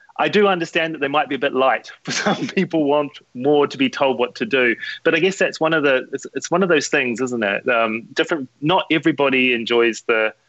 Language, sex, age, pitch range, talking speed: English, male, 30-49, 125-180 Hz, 240 wpm